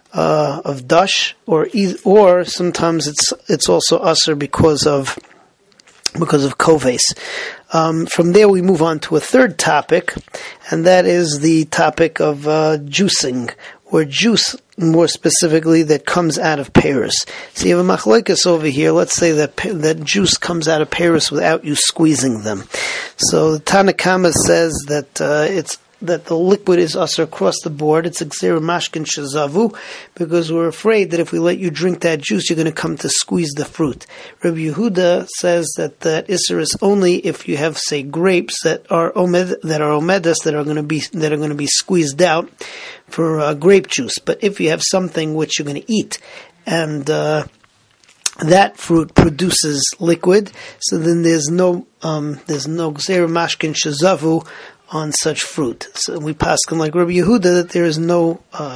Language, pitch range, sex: English, 155-180 Hz, male